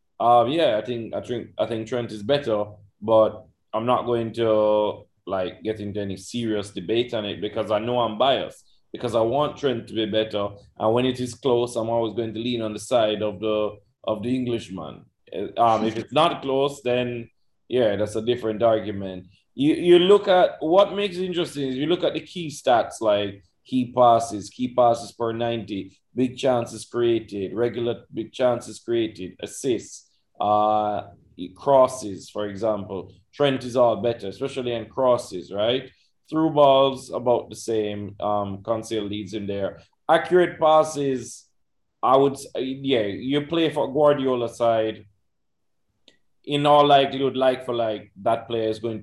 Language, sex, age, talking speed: English, male, 20-39, 170 wpm